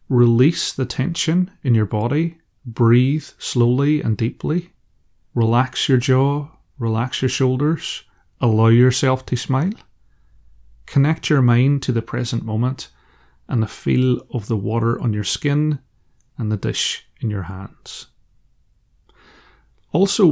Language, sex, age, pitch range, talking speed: English, male, 30-49, 110-135 Hz, 125 wpm